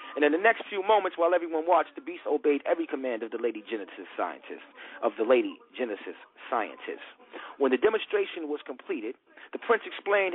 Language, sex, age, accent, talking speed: English, male, 40-59, American, 185 wpm